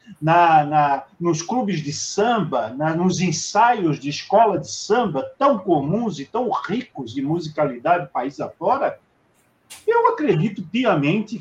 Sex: male